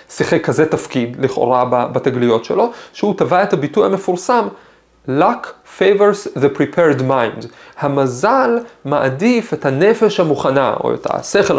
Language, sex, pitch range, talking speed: Hebrew, male, 130-200 Hz, 125 wpm